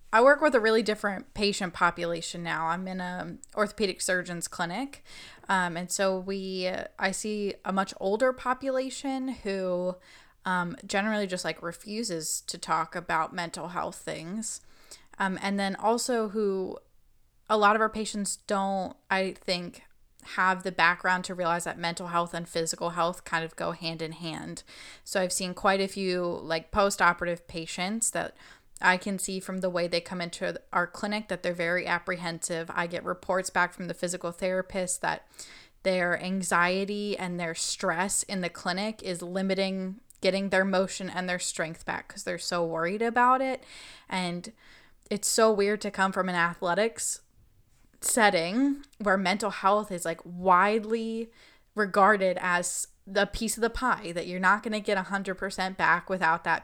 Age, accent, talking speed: 10-29, American, 165 wpm